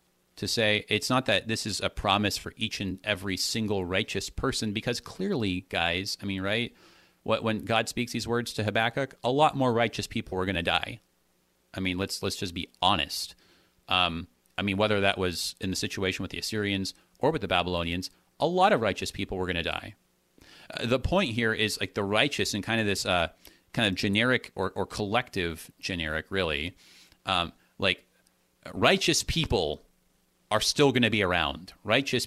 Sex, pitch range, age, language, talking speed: male, 90-120 Hz, 30-49, English, 190 wpm